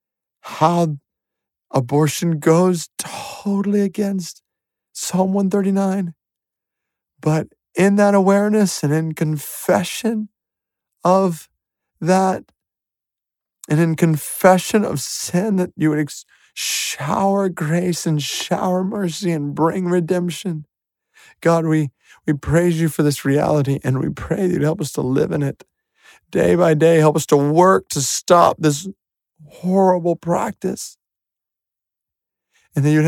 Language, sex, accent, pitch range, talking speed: English, male, American, 135-185 Hz, 120 wpm